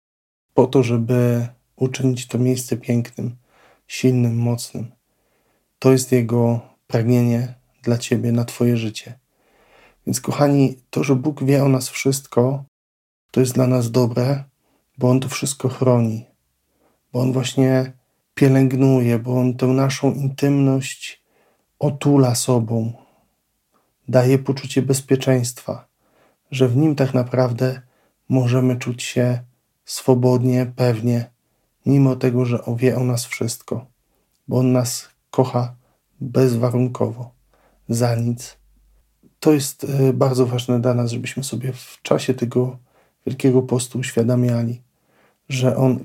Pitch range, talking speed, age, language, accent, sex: 120-130 Hz, 120 wpm, 40-59, Polish, native, male